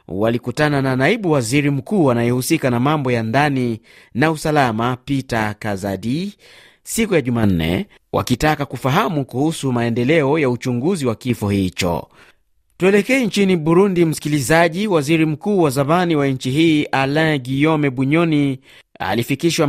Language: Swahili